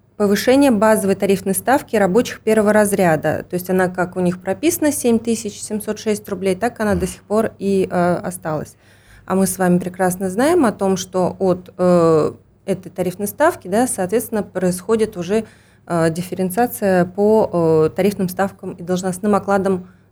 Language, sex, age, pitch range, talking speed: Russian, female, 20-39, 175-220 Hz, 140 wpm